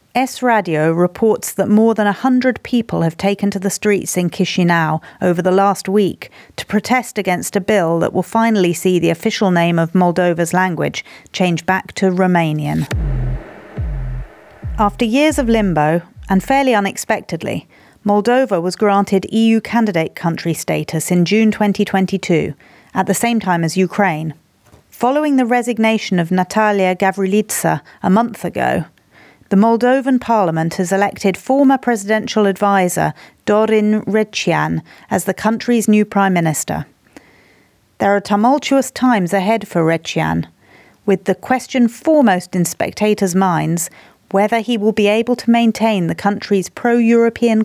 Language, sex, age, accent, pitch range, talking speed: English, female, 40-59, British, 180-225 Hz, 135 wpm